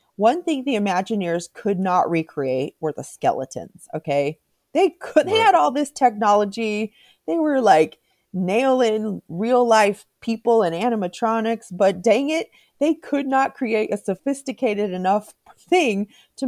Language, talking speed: English, 140 wpm